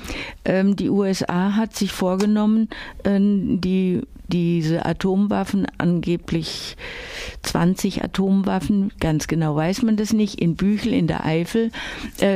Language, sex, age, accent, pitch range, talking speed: German, female, 50-69, German, 170-205 Hz, 100 wpm